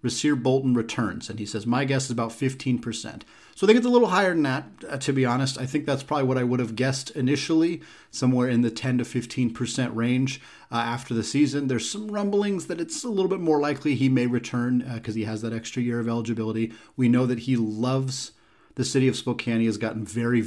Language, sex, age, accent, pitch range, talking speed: English, male, 30-49, American, 110-130 Hz, 235 wpm